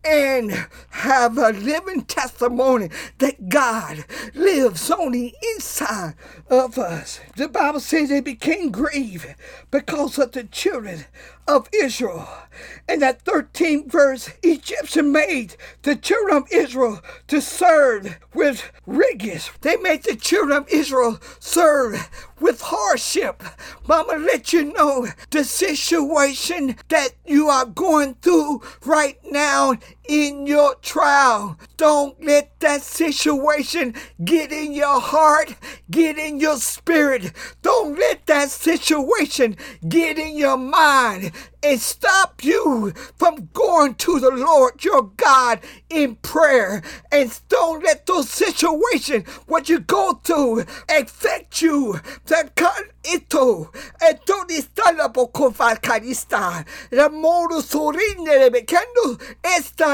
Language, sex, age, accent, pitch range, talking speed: English, male, 50-69, American, 265-330 Hz, 105 wpm